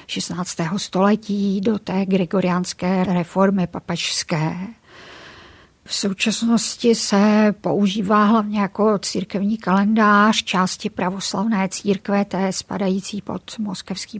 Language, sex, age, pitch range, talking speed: Czech, female, 50-69, 190-210 Hz, 95 wpm